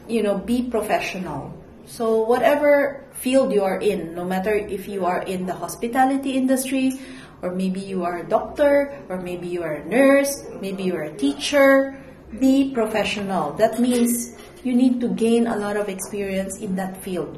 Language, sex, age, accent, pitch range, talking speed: Filipino, female, 40-59, native, 185-235 Hz, 175 wpm